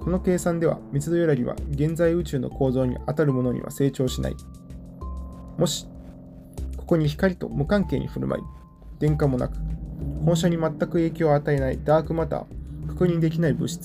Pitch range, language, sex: 120-155 Hz, Japanese, male